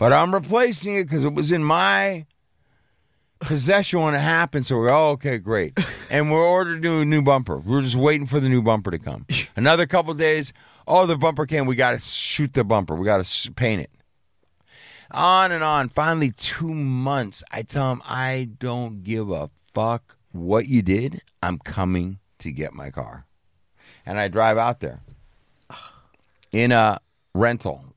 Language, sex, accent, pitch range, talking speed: English, male, American, 95-145 Hz, 180 wpm